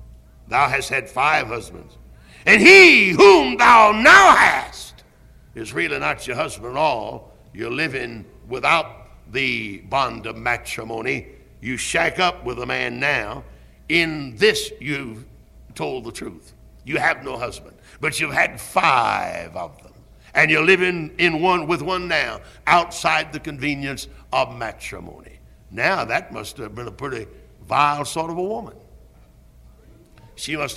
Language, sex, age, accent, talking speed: English, male, 60-79, American, 145 wpm